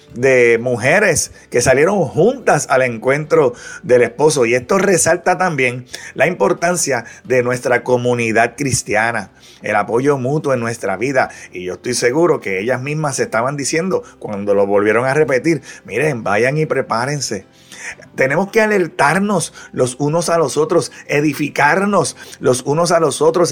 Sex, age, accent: male, 30-49, Venezuelan